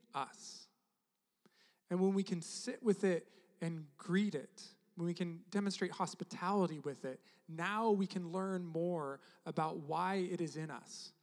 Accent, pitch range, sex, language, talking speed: American, 165-200 Hz, male, English, 155 wpm